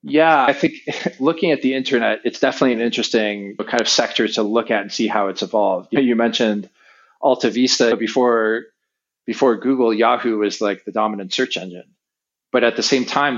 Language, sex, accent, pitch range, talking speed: English, male, American, 105-120 Hz, 185 wpm